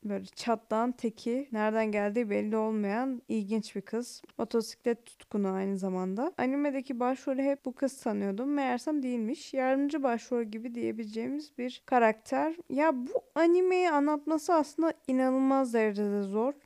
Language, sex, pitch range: Turkish, female, 245-320 Hz